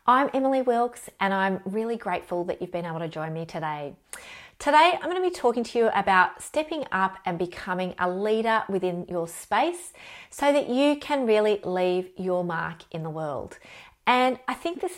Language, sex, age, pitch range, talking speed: English, female, 30-49, 180-240 Hz, 190 wpm